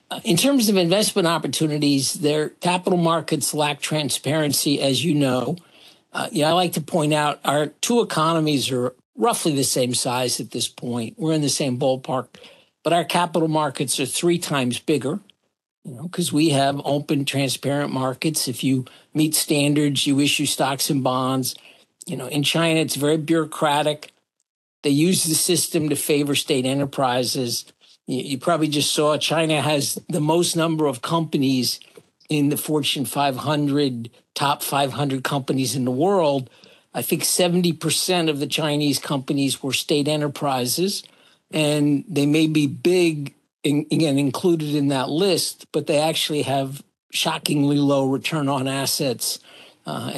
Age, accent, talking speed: 50-69, American, 150 wpm